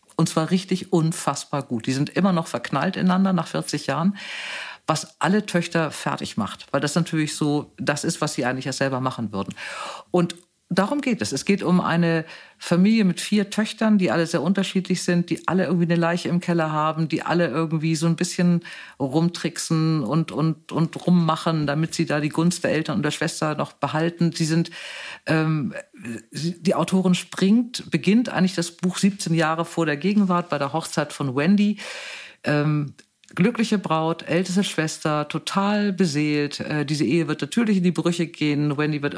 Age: 50-69